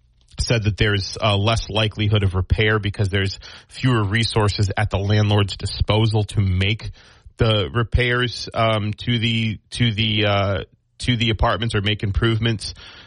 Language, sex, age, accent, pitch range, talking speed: English, male, 30-49, American, 100-125 Hz, 155 wpm